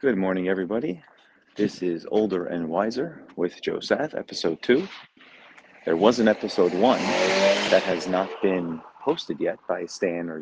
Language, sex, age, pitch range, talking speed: English, male, 30-49, 90-110 Hz, 155 wpm